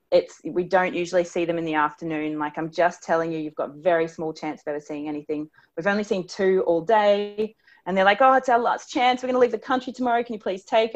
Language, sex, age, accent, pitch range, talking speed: English, female, 30-49, Australian, 170-235 Hz, 265 wpm